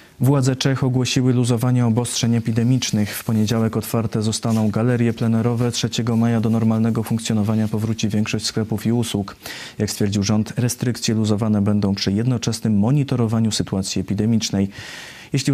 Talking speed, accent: 130 wpm, native